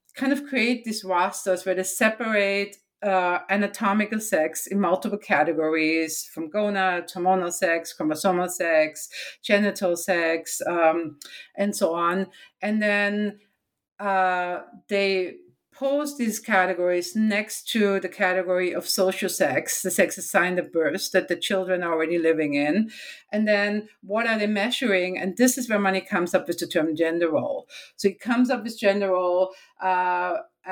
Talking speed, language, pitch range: 150 wpm, English, 180-215 Hz